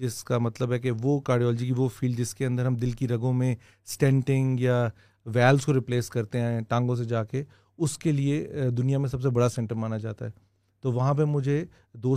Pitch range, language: 115-135 Hz, Urdu